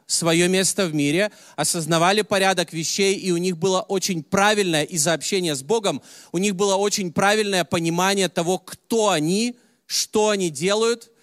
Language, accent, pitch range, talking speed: Russian, native, 155-200 Hz, 155 wpm